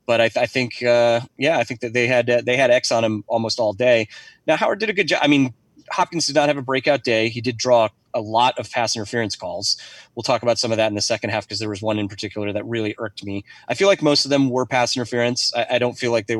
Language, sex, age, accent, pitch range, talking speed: English, male, 30-49, American, 110-130 Hz, 295 wpm